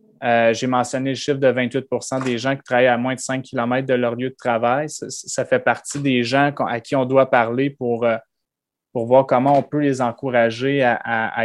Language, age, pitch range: English, 20-39, 120-135 Hz